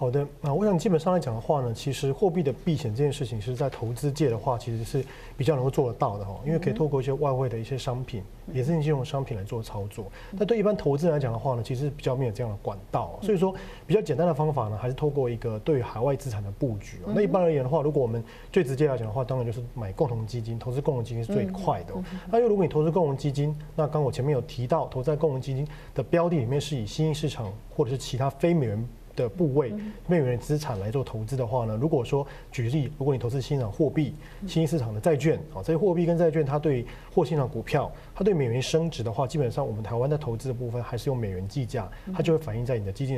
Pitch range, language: 120-155 Hz, Chinese